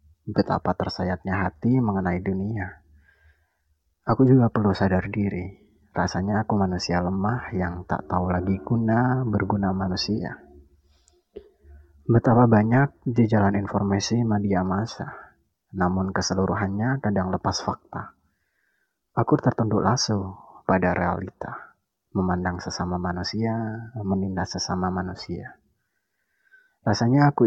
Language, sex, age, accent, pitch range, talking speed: Indonesian, male, 30-49, native, 95-110 Hz, 100 wpm